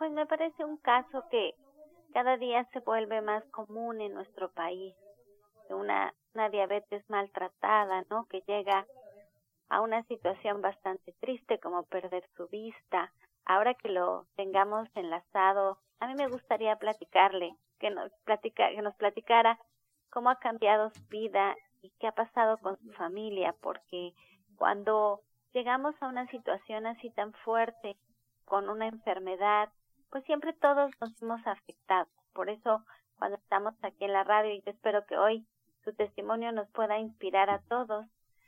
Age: 30-49